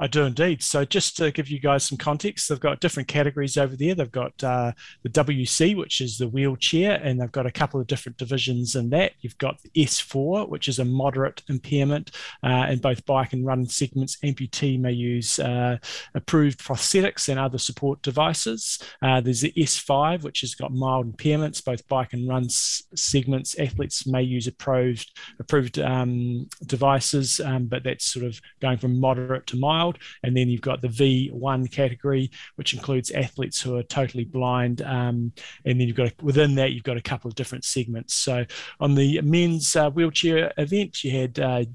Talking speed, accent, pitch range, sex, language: 190 wpm, Australian, 125-150 Hz, male, English